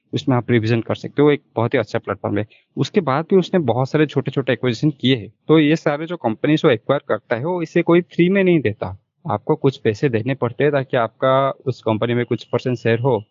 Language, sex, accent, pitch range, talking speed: Hindi, male, native, 120-150 Hz, 245 wpm